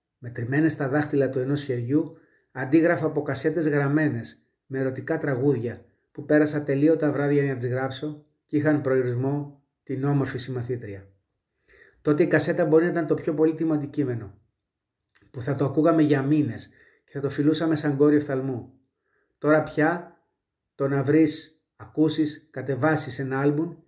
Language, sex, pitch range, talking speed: Greek, male, 130-155 Hz, 155 wpm